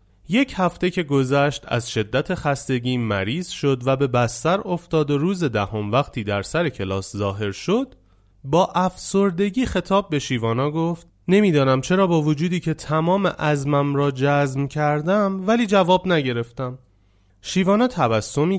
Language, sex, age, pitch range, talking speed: Persian, male, 30-49, 110-170 Hz, 140 wpm